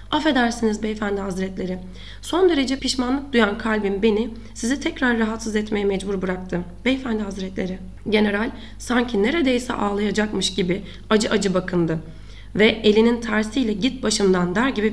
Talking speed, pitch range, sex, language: 130 wpm, 185-235 Hz, female, Turkish